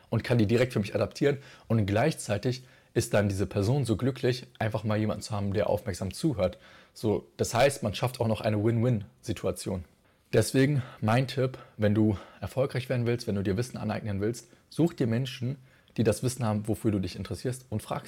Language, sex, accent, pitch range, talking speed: German, male, German, 105-120 Hz, 195 wpm